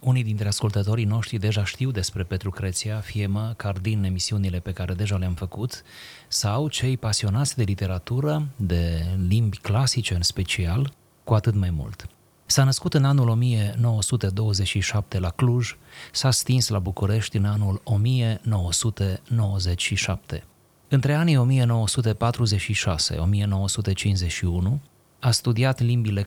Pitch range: 95-120 Hz